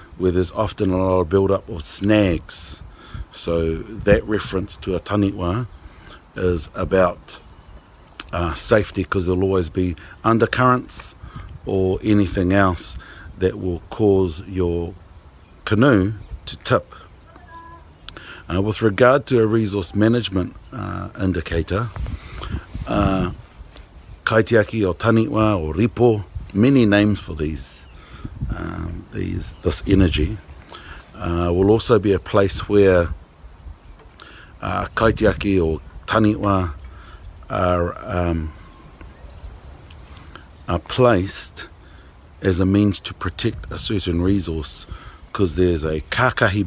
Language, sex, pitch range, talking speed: English, male, 85-100 Hz, 105 wpm